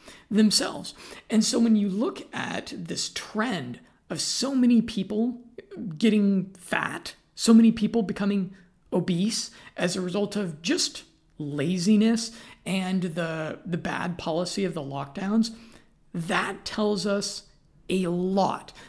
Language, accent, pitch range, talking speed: English, American, 170-215 Hz, 125 wpm